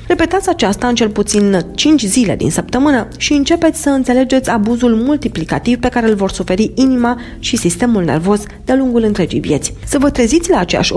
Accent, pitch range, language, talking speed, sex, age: native, 200-260 Hz, Romanian, 180 wpm, female, 30-49